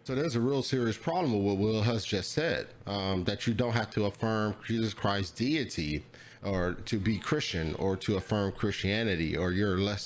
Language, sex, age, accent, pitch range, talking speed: English, male, 30-49, American, 95-115 Hz, 195 wpm